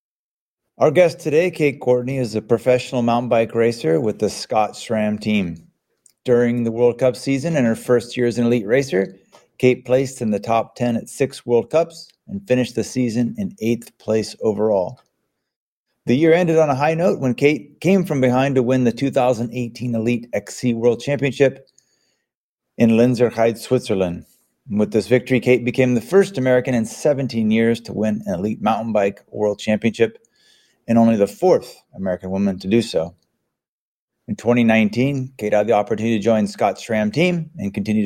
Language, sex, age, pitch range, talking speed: English, male, 30-49, 110-130 Hz, 175 wpm